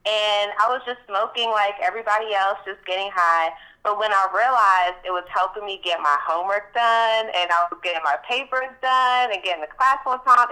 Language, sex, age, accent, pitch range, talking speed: English, female, 20-39, American, 155-195 Hz, 200 wpm